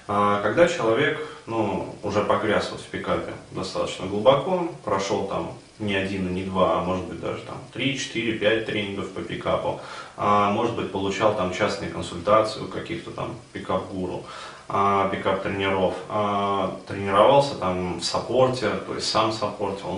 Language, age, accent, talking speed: Russian, 20-39, native, 145 wpm